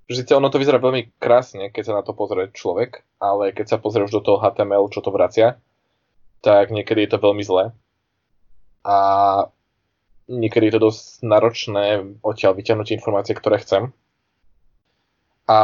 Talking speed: 155 wpm